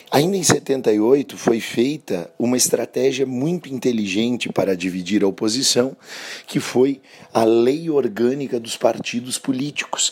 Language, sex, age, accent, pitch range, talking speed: Portuguese, male, 40-59, Brazilian, 100-130 Hz, 125 wpm